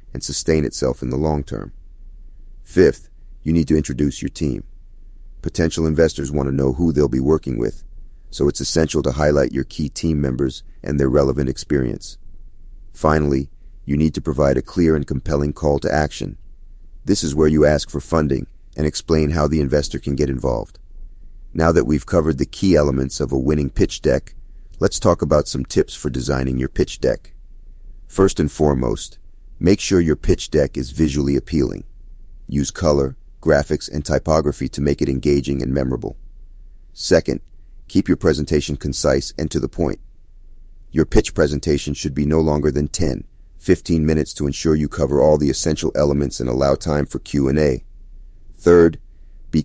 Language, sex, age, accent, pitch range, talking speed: English, male, 40-59, American, 70-80 Hz, 175 wpm